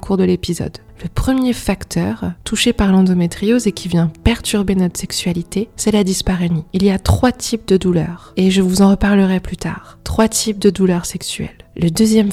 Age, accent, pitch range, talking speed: 20-39, French, 180-200 Hz, 190 wpm